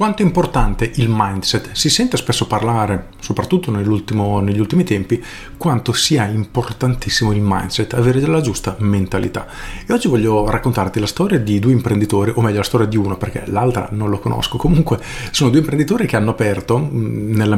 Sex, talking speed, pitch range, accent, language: male, 170 wpm, 100-125 Hz, native, Italian